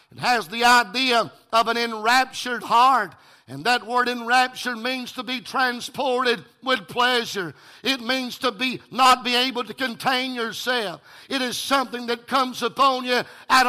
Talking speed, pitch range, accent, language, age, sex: 160 wpm, 250-275 Hz, American, English, 50-69, male